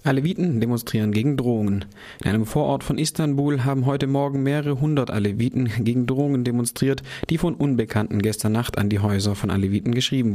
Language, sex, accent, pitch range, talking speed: German, male, German, 110-135 Hz, 170 wpm